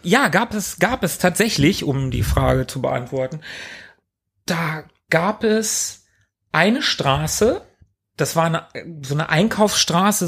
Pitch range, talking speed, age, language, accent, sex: 125-180 Hz, 130 wpm, 40-59, German, German, male